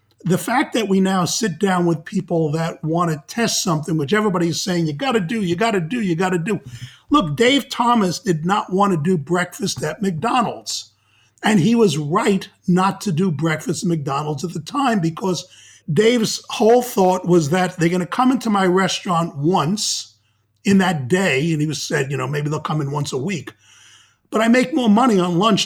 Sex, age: male, 50-69